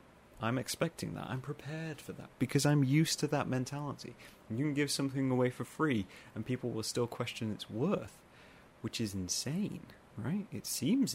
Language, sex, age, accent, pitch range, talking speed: English, male, 30-49, British, 95-130 Hz, 185 wpm